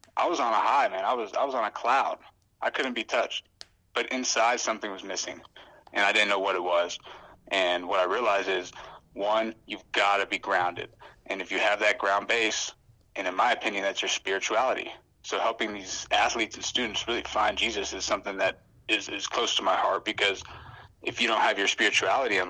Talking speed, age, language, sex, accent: 215 wpm, 30-49, English, male, American